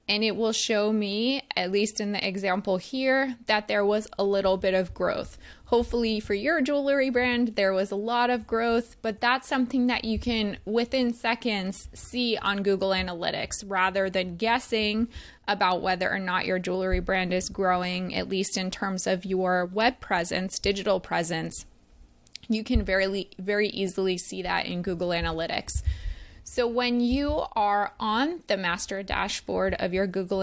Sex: female